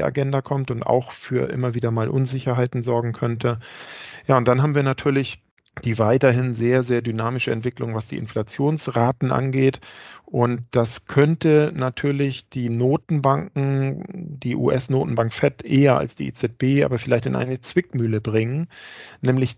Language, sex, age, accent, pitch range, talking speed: German, male, 40-59, German, 115-135 Hz, 145 wpm